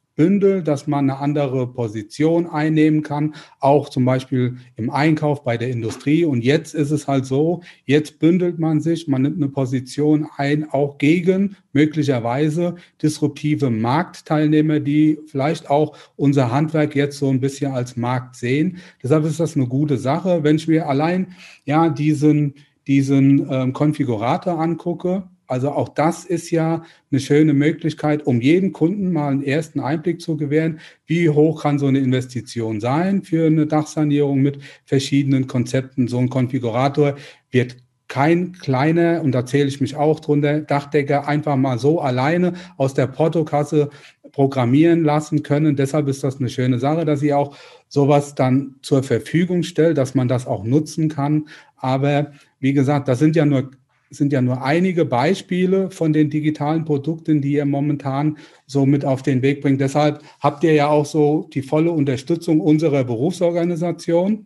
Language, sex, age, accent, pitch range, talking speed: German, male, 40-59, German, 135-160 Hz, 160 wpm